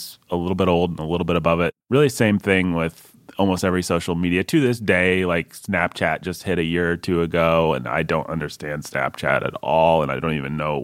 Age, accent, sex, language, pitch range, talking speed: 30-49, American, male, English, 85-110 Hz, 230 wpm